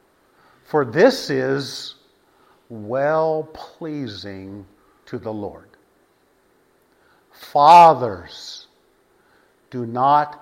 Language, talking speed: English, 60 wpm